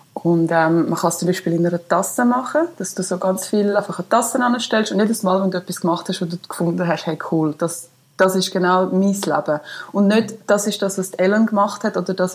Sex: female